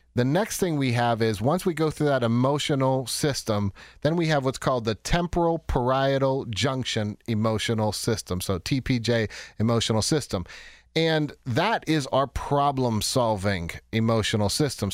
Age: 40-59